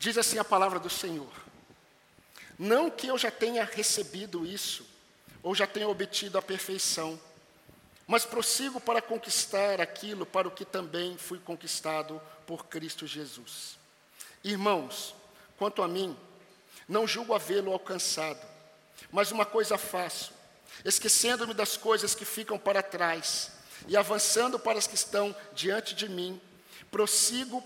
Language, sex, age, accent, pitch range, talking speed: Portuguese, male, 50-69, Brazilian, 185-235 Hz, 135 wpm